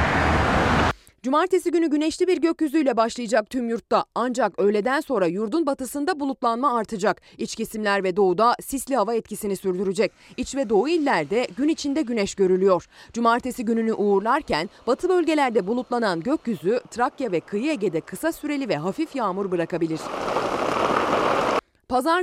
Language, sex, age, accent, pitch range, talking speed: Turkish, female, 30-49, native, 200-300 Hz, 130 wpm